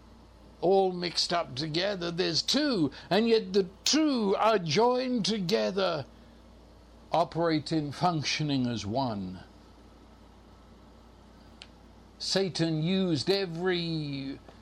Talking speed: 80 wpm